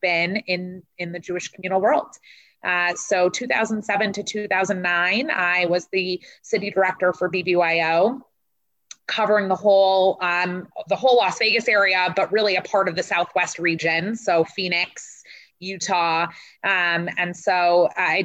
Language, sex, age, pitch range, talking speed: English, female, 20-39, 175-205 Hz, 140 wpm